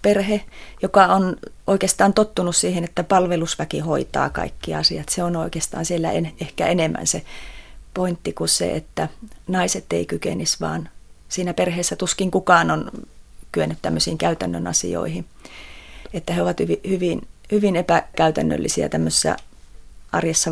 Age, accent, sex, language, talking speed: 30-49, native, female, Finnish, 130 wpm